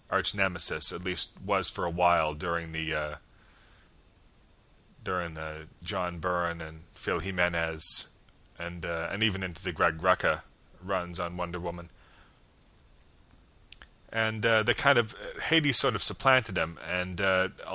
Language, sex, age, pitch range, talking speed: English, male, 30-49, 85-95 Hz, 140 wpm